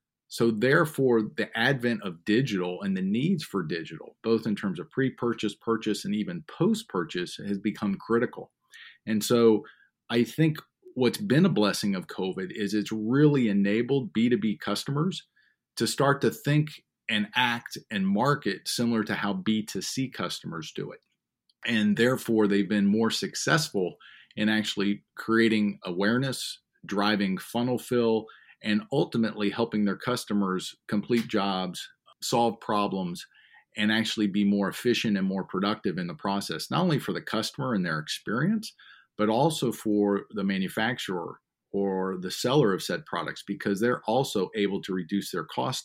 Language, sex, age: English, male, 40-59